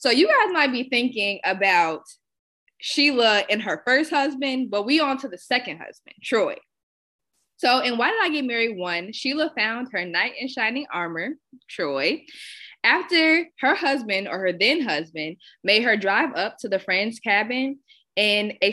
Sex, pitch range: female, 185-255 Hz